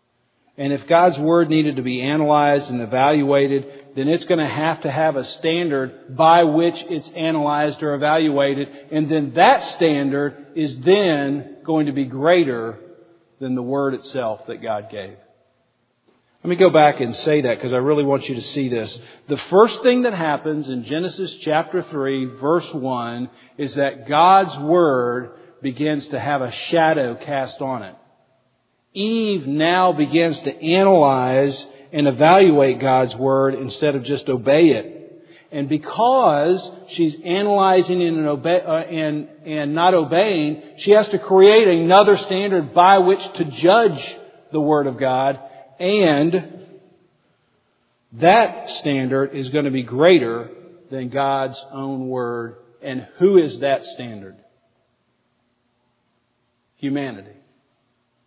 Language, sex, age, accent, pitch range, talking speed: English, male, 40-59, American, 135-170 Hz, 135 wpm